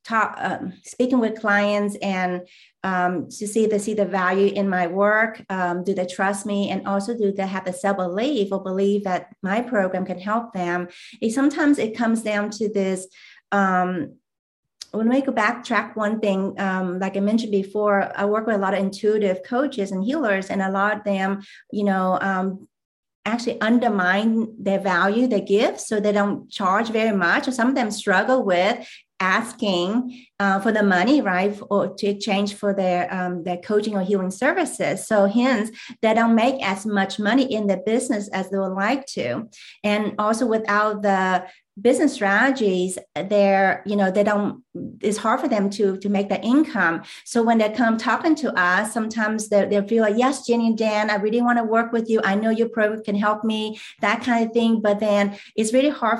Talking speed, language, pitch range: 195 wpm, English, 195-225 Hz